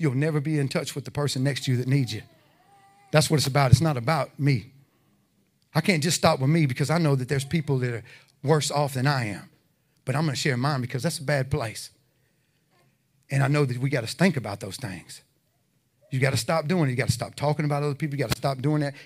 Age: 40-59